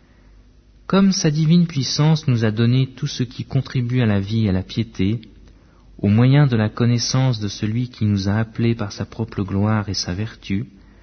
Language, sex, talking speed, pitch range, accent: French, male, 195 wpm, 105-140 Hz, French